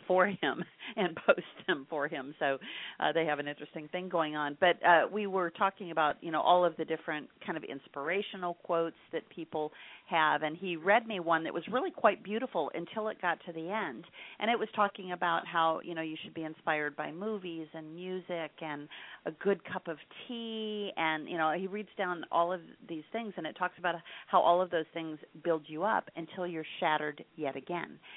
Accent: American